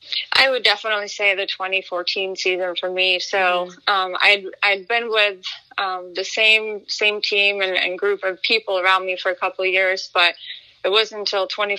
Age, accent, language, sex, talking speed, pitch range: 20-39, American, English, female, 195 wpm, 185-210 Hz